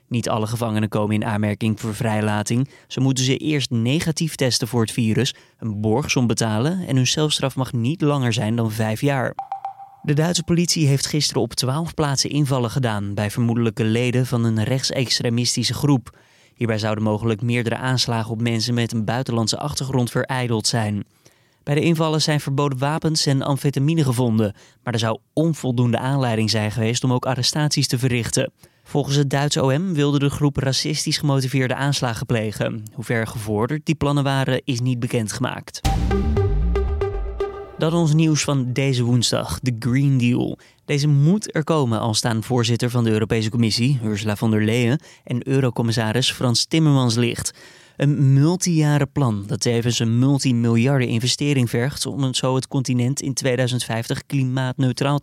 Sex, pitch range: male, 115-145 Hz